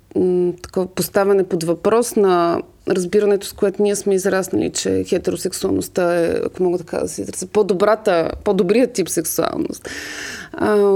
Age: 30-49